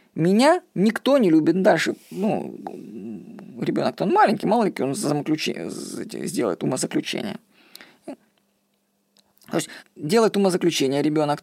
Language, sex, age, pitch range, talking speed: Russian, female, 20-39, 160-215 Hz, 100 wpm